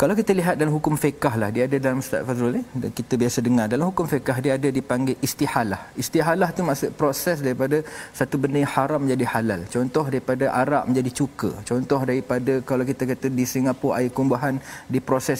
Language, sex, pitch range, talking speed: Malayalam, male, 120-150 Hz, 190 wpm